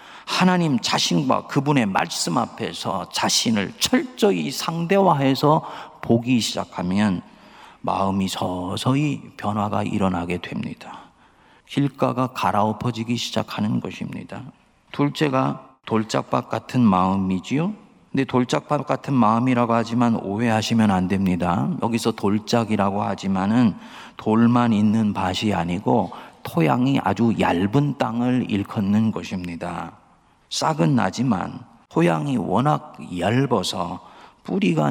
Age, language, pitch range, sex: 40-59, Korean, 95-135 Hz, male